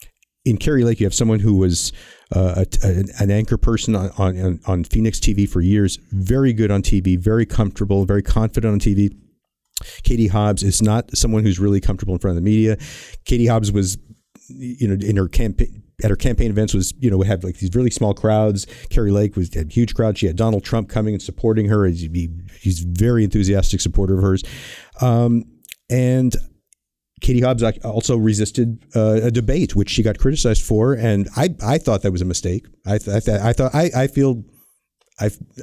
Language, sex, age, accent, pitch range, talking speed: English, male, 50-69, American, 100-115 Hz, 200 wpm